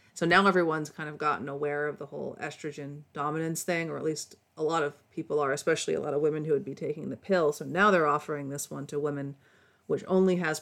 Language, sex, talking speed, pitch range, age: English, female, 245 wpm, 145-165 Hz, 40-59